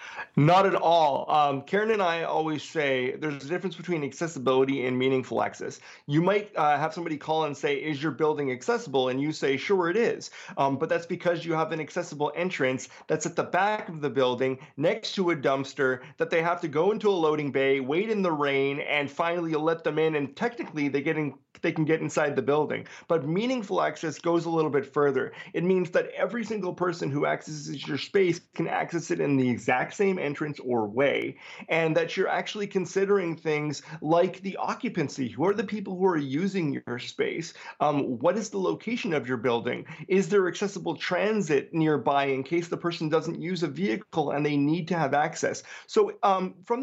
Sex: male